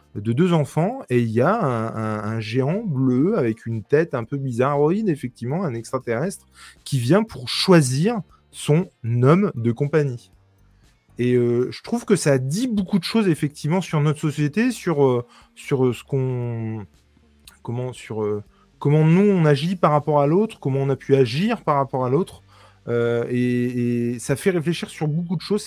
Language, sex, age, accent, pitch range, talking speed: French, male, 20-39, French, 110-155 Hz, 185 wpm